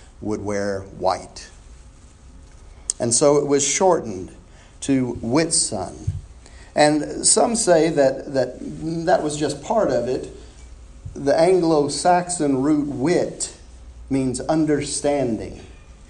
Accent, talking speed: American, 100 wpm